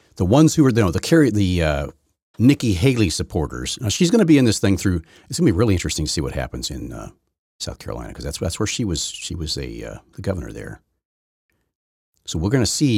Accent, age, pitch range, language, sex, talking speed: American, 40-59, 80-105 Hz, English, male, 240 wpm